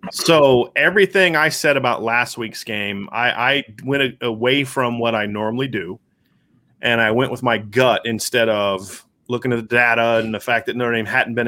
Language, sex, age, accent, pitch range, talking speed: English, male, 30-49, American, 115-130 Hz, 200 wpm